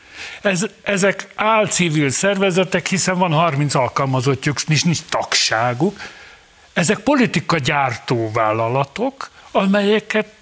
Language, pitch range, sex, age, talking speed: Hungarian, 130-180 Hz, male, 60-79, 90 wpm